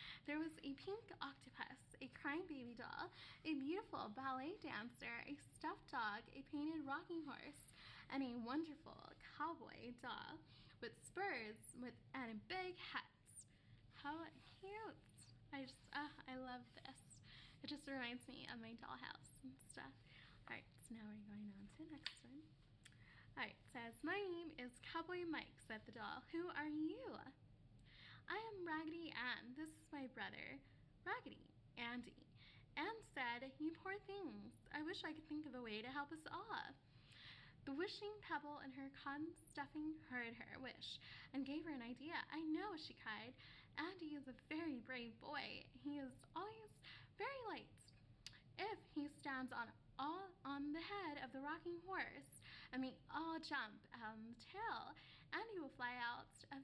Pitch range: 250-330 Hz